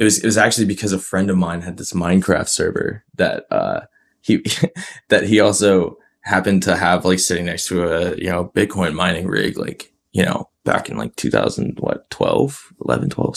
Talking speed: 195 wpm